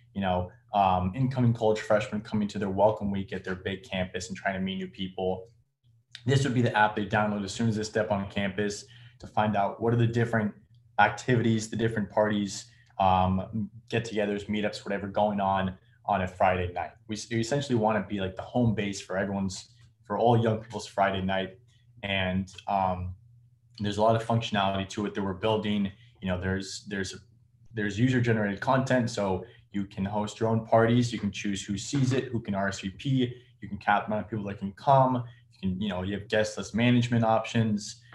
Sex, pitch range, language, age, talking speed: male, 100-120 Hz, English, 20-39, 205 wpm